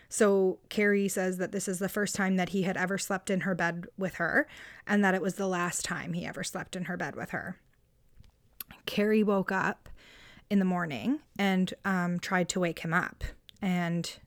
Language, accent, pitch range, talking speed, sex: English, American, 175-200 Hz, 200 wpm, female